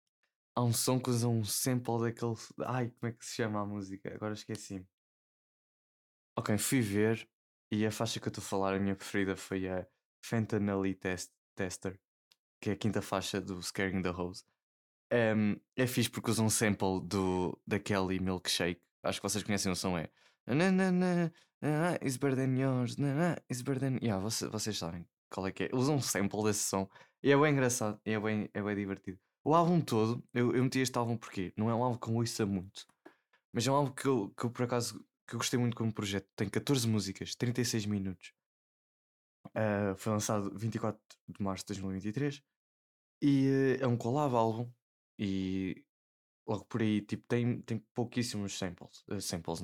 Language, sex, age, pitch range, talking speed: Portuguese, male, 20-39, 95-125 Hz, 180 wpm